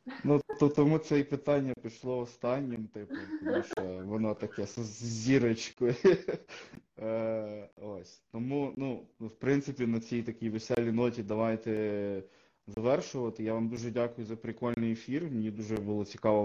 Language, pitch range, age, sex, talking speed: Ukrainian, 105-125 Hz, 20-39, male, 135 wpm